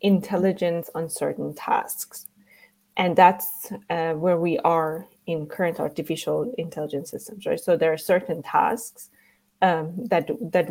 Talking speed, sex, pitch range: 135 wpm, female, 160-205 Hz